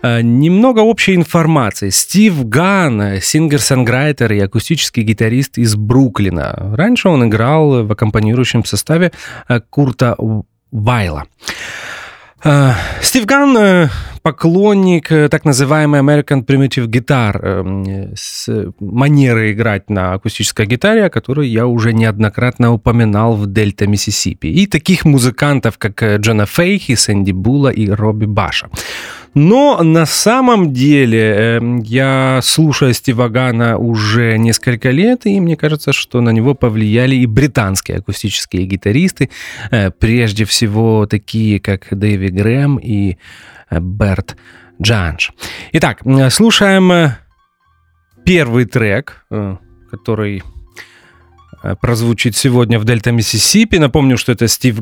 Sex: male